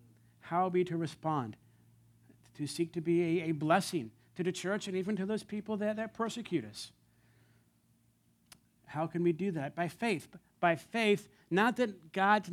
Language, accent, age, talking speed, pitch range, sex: English, American, 50-69, 170 wpm, 120-195 Hz, male